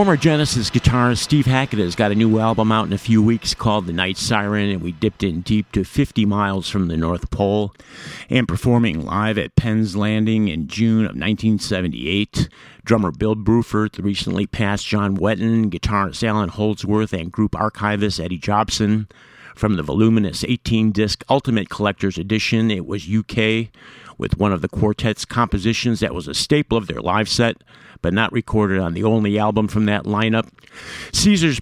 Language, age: English, 50-69